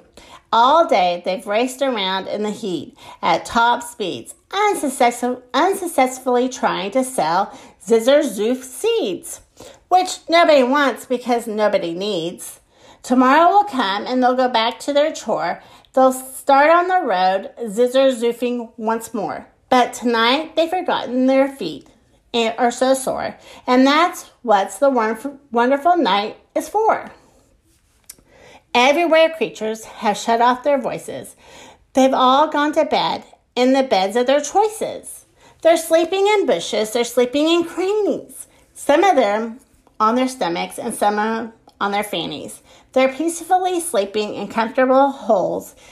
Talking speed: 135 wpm